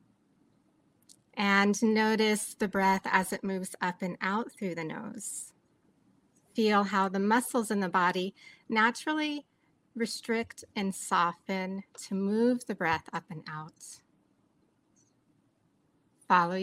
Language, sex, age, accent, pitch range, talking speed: English, female, 30-49, American, 180-230 Hz, 115 wpm